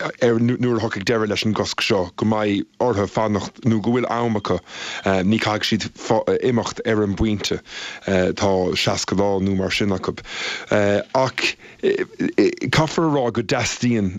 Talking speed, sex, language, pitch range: 140 wpm, male, English, 105-125 Hz